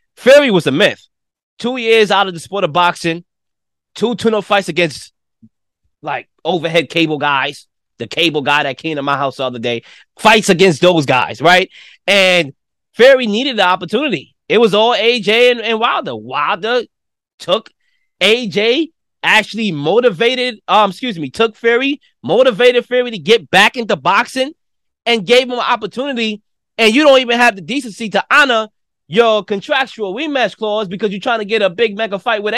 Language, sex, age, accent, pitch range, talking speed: English, male, 20-39, American, 160-235 Hz, 170 wpm